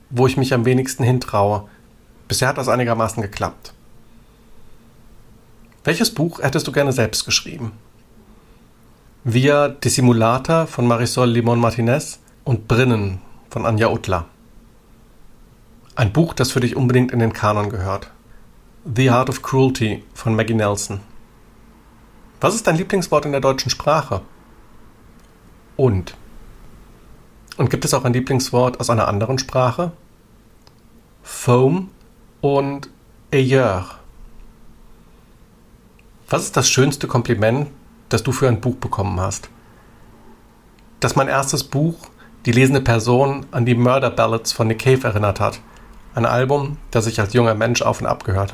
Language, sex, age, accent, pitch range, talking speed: German, male, 50-69, German, 115-135 Hz, 130 wpm